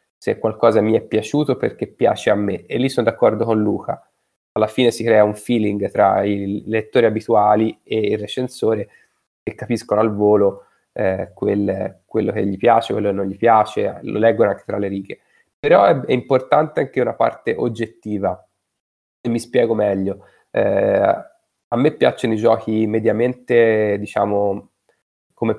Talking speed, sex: 165 wpm, male